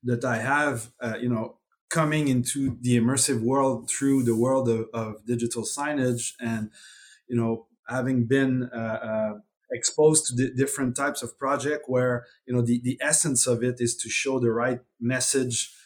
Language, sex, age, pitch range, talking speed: English, male, 30-49, 115-135 Hz, 175 wpm